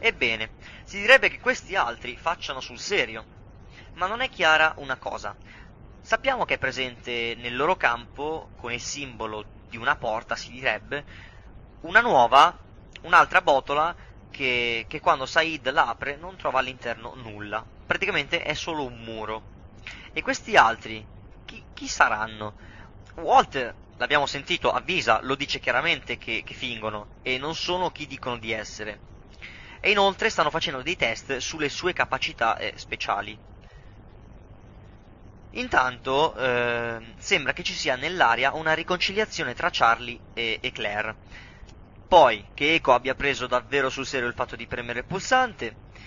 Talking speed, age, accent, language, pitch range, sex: 145 wpm, 20-39, native, Italian, 105-140 Hz, male